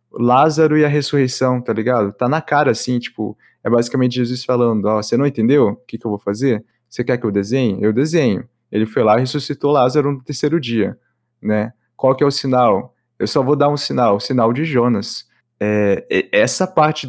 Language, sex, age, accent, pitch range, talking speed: Portuguese, male, 20-39, Brazilian, 110-130 Hz, 210 wpm